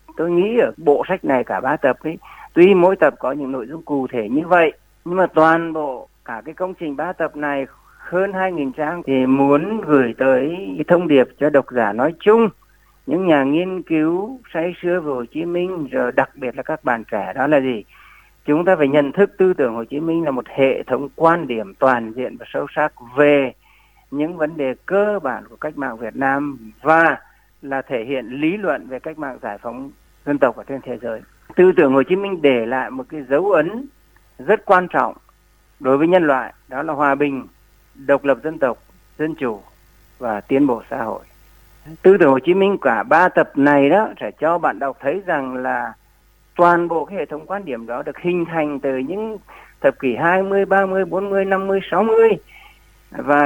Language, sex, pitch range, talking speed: Vietnamese, male, 135-180 Hz, 210 wpm